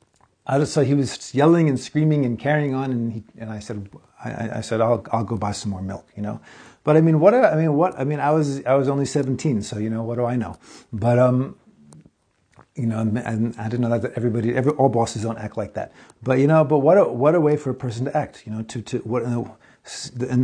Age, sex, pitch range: 40-59, male, 115-145 Hz